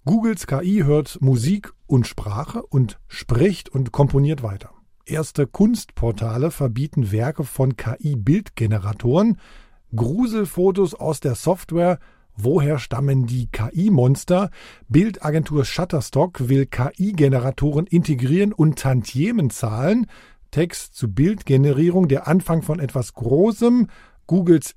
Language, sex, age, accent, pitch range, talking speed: German, male, 50-69, German, 130-180 Hz, 100 wpm